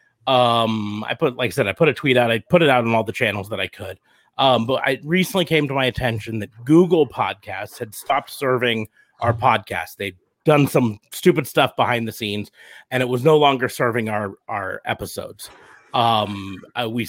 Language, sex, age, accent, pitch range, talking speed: English, male, 30-49, American, 110-140 Hz, 200 wpm